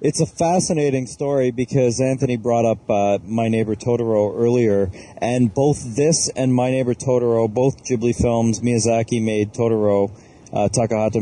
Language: English